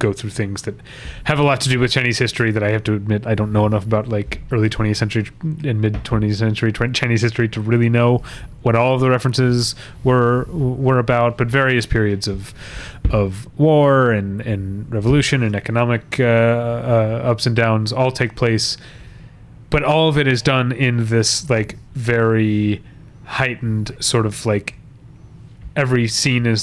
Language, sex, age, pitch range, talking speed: English, male, 30-49, 110-125 Hz, 180 wpm